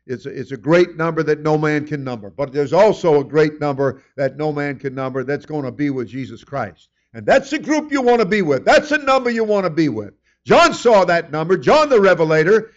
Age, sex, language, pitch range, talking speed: 50-69, male, English, 145-205 Hz, 240 wpm